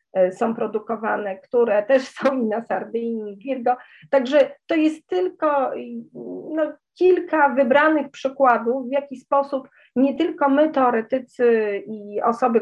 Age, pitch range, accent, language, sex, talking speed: 40-59, 205-250 Hz, native, Polish, female, 135 wpm